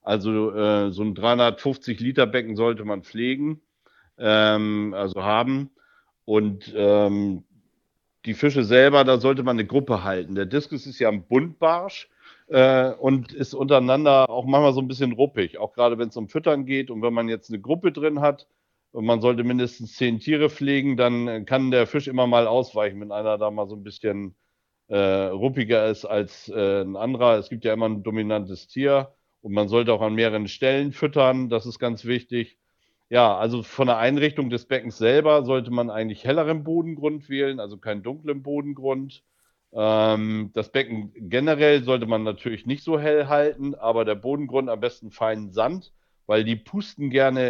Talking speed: 175 wpm